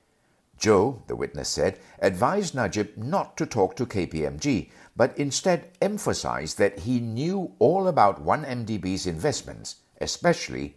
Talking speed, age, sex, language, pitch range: 125 wpm, 60-79, male, English, 95-140 Hz